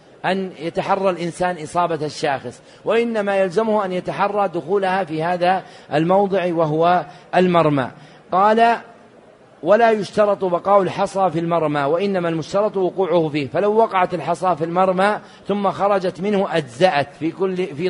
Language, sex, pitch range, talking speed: Arabic, male, 160-195 Hz, 125 wpm